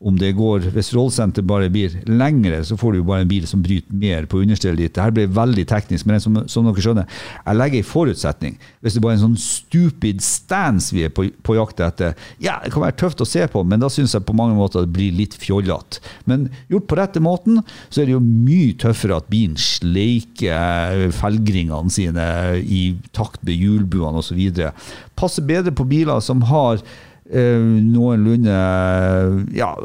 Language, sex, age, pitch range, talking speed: English, male, 50-69, 95-120 Hz, 200 wpm